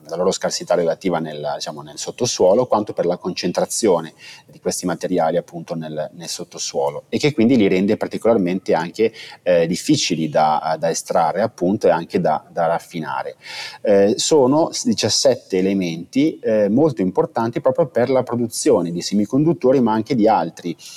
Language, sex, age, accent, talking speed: Italian, male, 30-49, native, 150 wpm